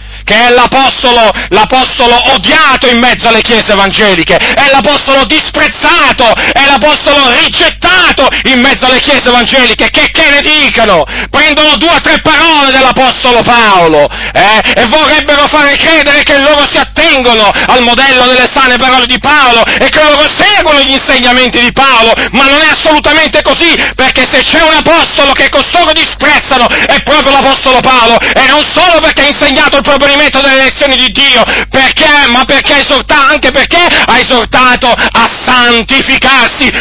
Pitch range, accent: 250-295 Hz, native